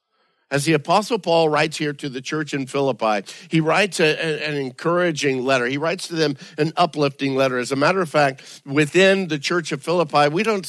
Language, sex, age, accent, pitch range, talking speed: English, male, 50-69, American, 140-170 Hz, 210 wpm